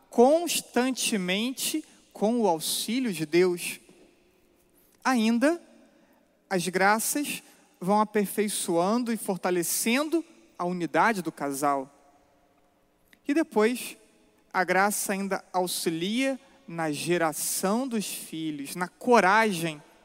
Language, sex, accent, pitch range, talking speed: Portuguese, male, Brazilian, 170-240 Hz, 85 wpm